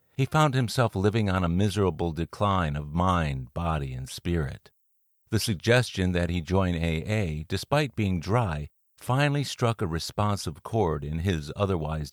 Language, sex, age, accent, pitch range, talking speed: English, male, 50-69, American, 80-110 Hz, 150 wpm